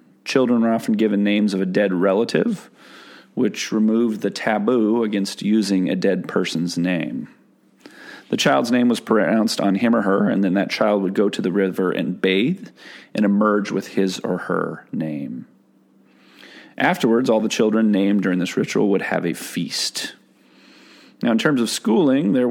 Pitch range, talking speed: 95-115 Hz, 170 wpm